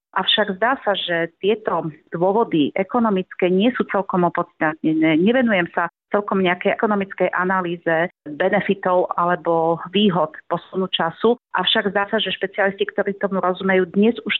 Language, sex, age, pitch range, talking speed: Slovak, female, 40-59, 180-205 Hz, 135 wpm